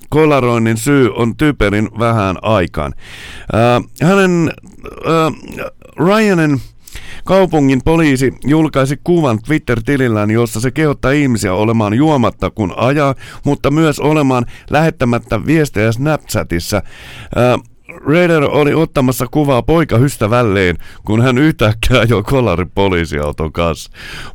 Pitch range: 115-145 Hz